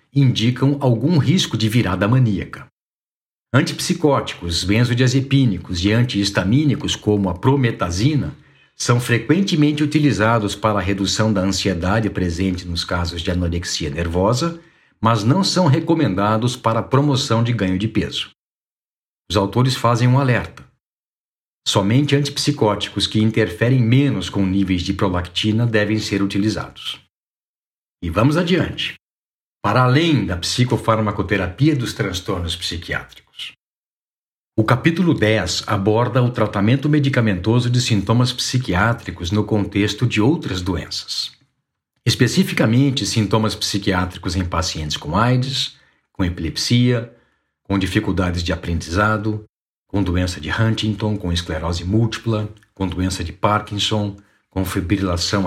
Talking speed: 115 wpm